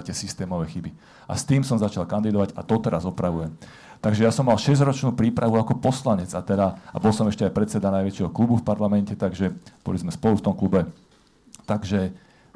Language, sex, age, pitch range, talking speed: Slovak, male, 40-59, 95-115 Hz, 195 wpm